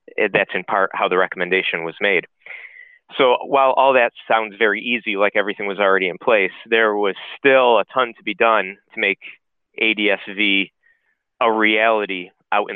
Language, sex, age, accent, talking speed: English, male, 30-49, American, 170 wpm